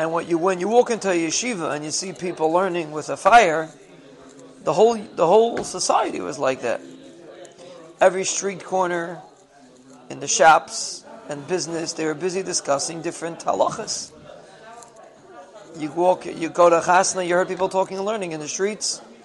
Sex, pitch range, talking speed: male, 165-190 Hz, 165 wpm